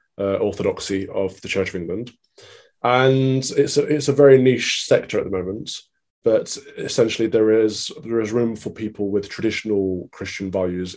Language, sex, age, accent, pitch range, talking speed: English, male, 20-39, British, 95-115 Hz, 170 wpm